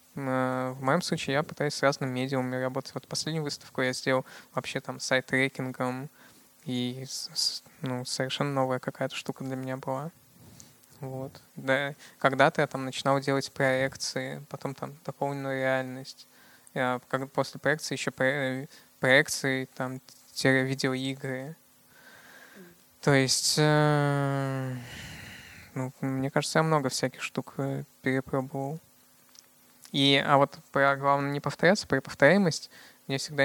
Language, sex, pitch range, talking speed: Russian, male, 130-145 Hz, 110 wpm